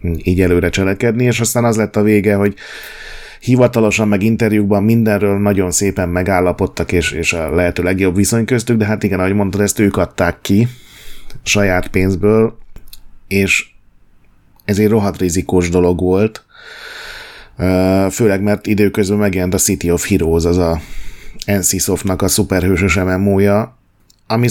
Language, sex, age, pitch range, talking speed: Hungarian, male, 30-49, 95-110 Hz, 140 wpm